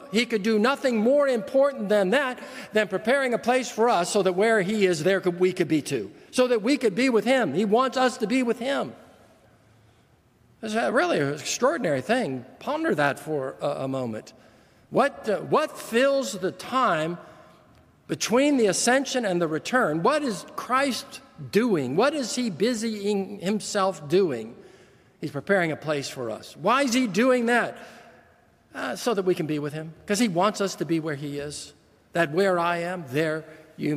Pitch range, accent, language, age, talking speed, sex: 155-230 Hz, American, English, 50-69, 185 wpm, male